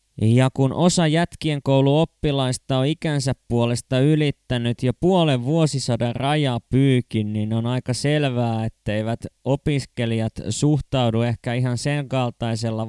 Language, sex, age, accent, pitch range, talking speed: Finnish, male, 20-39, native, 120-145 Hz, 115 wpm